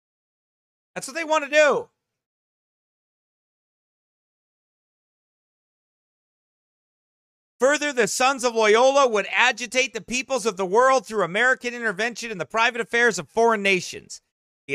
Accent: American